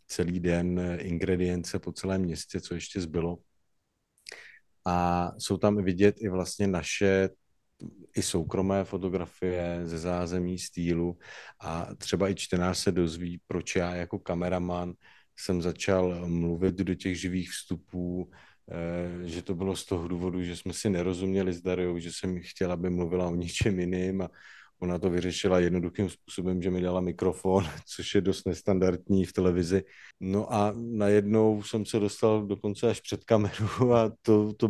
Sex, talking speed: male, 150 wpm